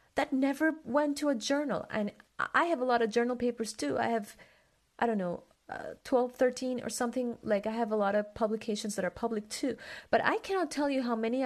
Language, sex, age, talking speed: English, female, 30-49, 225 wpm